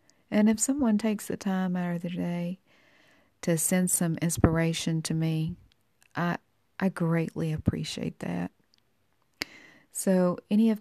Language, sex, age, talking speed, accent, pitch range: English, female, 40-59, 135 wpm, American, 155-190 Hz